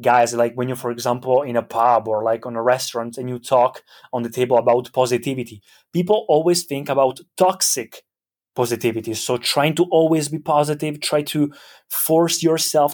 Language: English